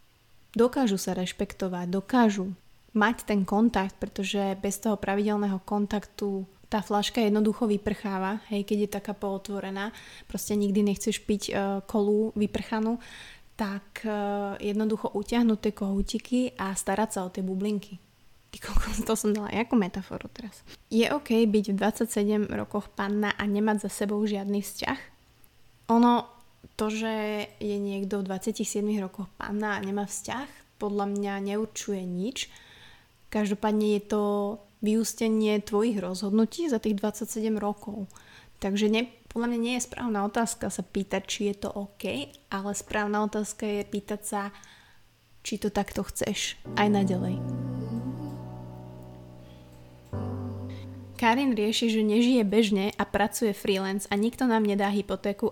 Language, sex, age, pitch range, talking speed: Slovak, female, 20-39, 195-220 Hz, 130 wpm